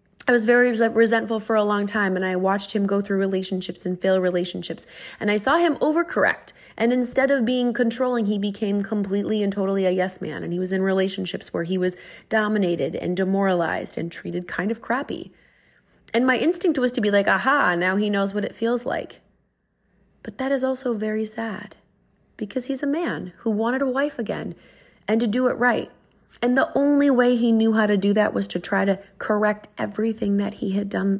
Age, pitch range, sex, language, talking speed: 30-49, 195-240 Hz, female, English, 205 wpm